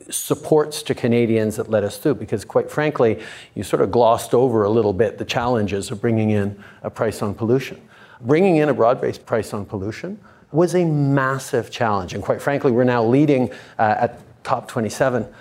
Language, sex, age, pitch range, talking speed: English, male, 50-69, 115-140 Hz, 185 wpm